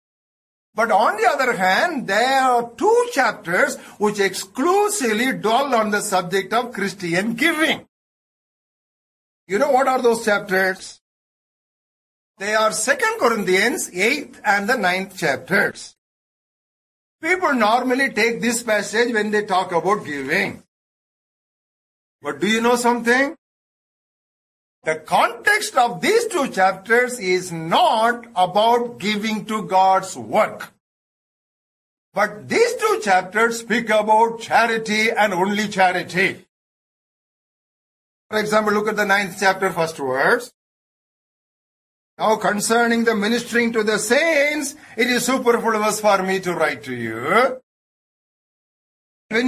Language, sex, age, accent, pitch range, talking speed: English, male, 60-79, Indian, 190-245 Hz, 120 wpm